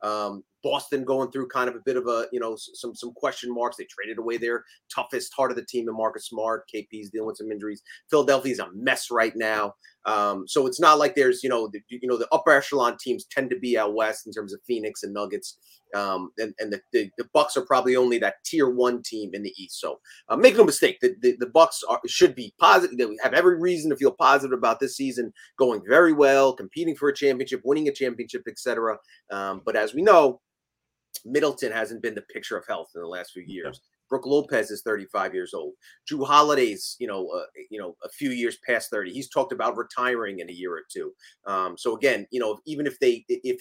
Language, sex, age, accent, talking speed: English, male, 30-49, American, 230 wpm